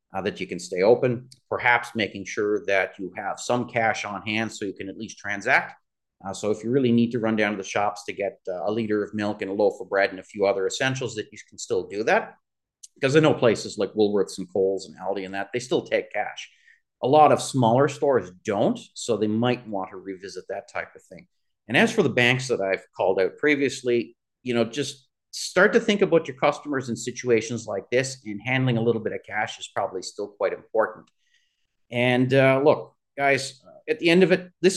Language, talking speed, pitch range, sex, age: English, 230 wpm, 110-150 Hz, male, 40-59